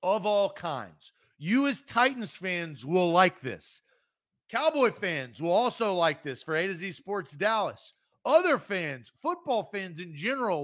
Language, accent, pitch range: English, American, 145-185 Hz